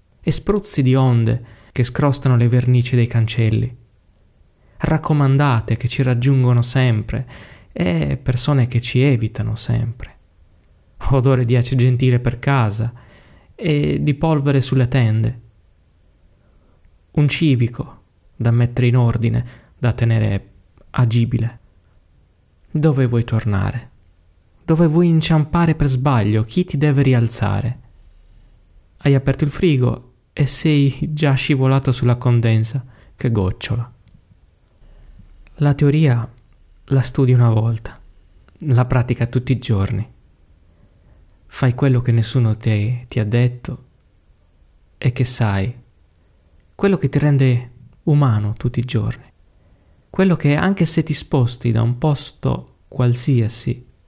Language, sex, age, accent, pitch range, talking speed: Italian, male, 20-39, native, 105-135 Hz, 115 wpm